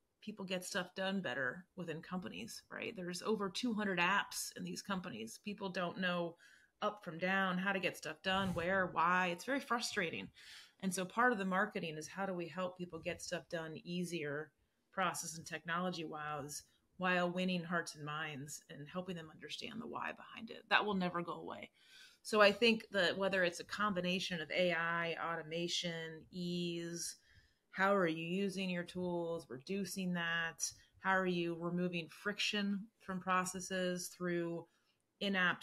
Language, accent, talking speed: English, American, 165 wpm